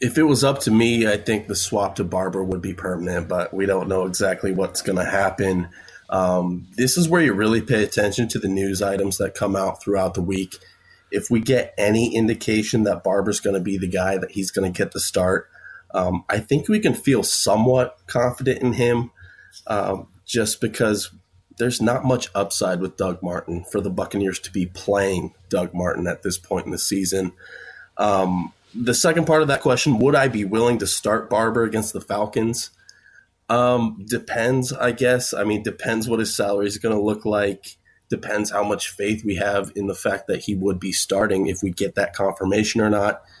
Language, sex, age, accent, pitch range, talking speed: English, male, 20-39, American, 95-115 Hz, 205 wpm